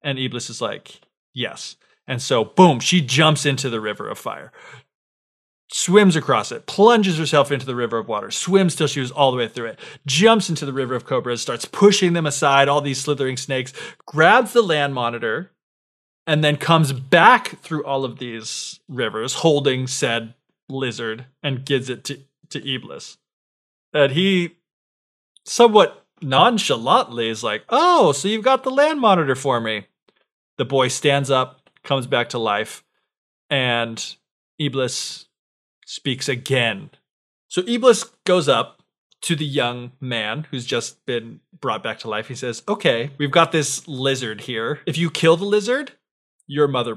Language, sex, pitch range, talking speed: English, male, 120-165 Hz, 160 wpm